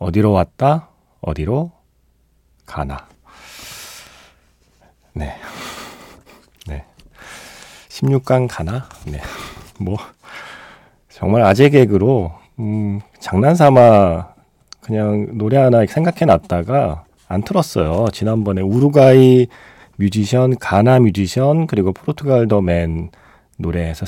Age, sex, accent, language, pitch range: 40-59, male, native, Korean, 90-130 Hz